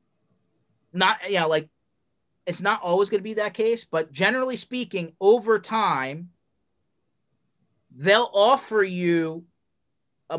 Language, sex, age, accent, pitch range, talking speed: English, male, 30-49, American, 155-210 Hz, 125 wpm